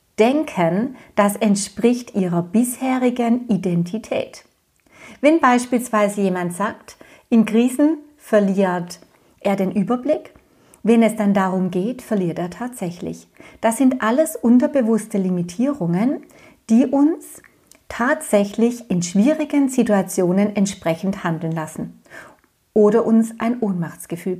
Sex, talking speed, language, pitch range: female, 105 wpm, German, 180-245 Hz